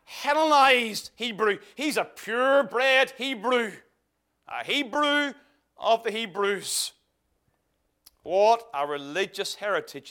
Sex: male